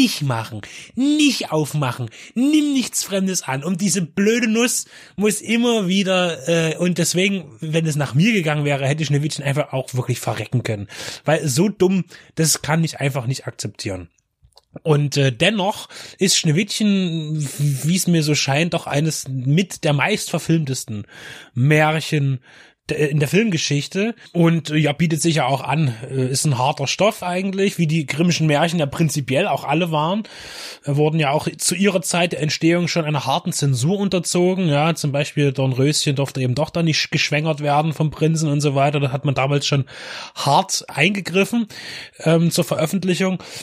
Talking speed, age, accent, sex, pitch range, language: 165 wpm, 20-39, German, male, 140-175 Hz, German